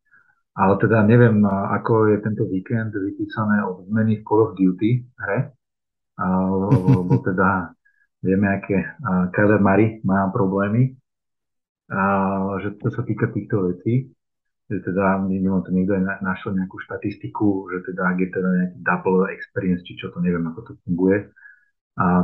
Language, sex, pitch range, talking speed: Slovak, male, 90-105 Hz, 150 wpm